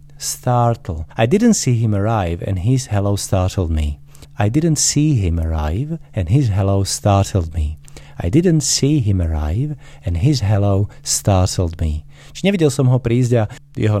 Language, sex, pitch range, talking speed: Slovak, male, 95-130 Hz, 165 wpm